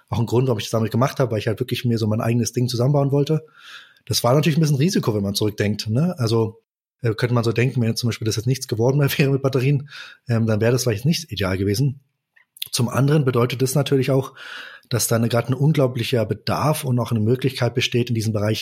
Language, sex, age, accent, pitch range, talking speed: German, male, 20-39, German, 110-130 Hz, 235 wpm